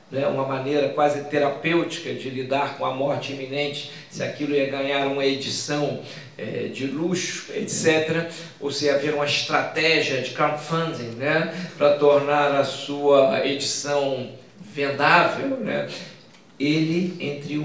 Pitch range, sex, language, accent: 140-180 Hz, male, Portuguese, Brazilian